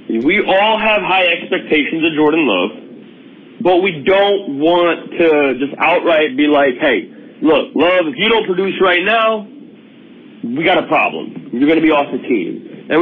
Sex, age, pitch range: male, 40-59, 155-250 Hz